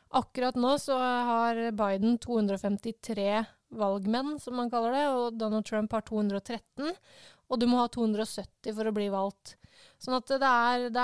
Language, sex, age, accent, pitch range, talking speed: English, female, 20-39, Swedish, 215-255 Hz, 170 wpm